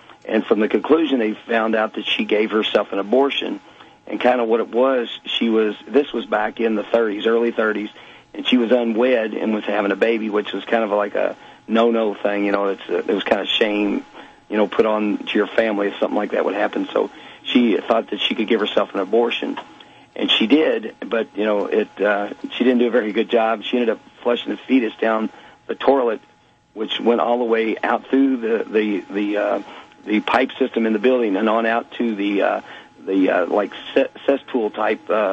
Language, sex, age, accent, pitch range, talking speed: English, male, 50-69, American, 105-120 Hz, 225 wpm